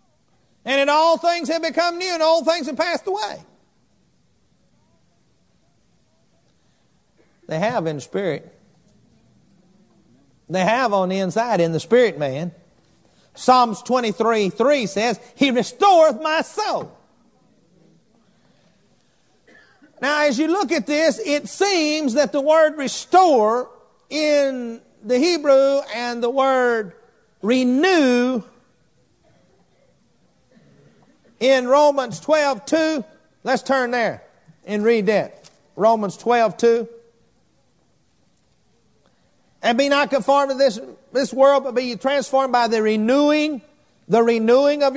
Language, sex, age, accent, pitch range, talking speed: English, male, 50-69, American, 230-290 Hz, 110 wpm